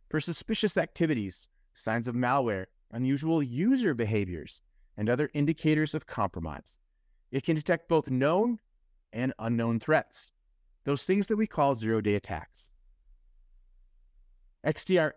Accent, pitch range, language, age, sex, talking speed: American, 105-160 Hz, English, 30-49, male, 120 wpm